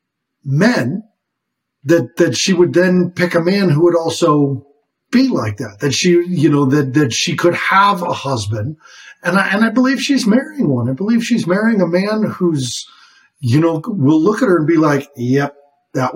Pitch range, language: 135-200 Hz, English